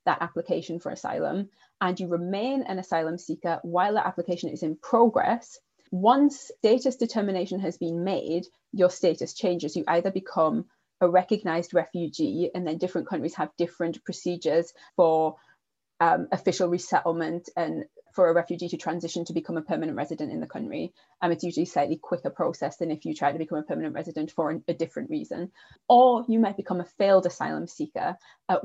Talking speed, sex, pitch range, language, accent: 180 wpm, female, 170-225 Hz, English, British